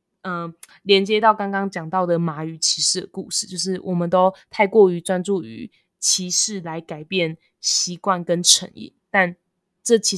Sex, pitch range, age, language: female, 175-205 Hz, 20-39, Chinese